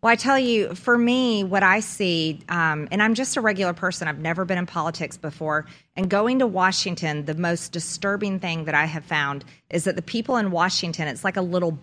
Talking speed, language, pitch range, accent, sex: 225 wpm, English, 160-200 Hz, American, female